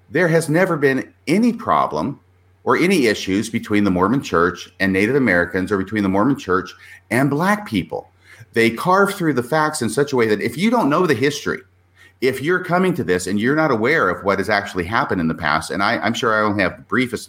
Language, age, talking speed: English, 40-59, 230 wpm